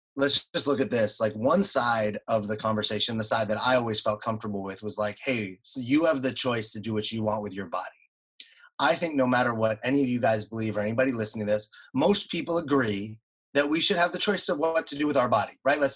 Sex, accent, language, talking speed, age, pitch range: male, American, English, 255 wpm, 30-49, 110-140 Hz